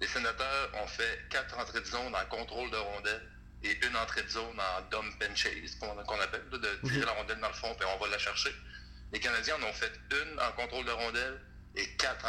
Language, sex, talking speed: French, male, 235 wpm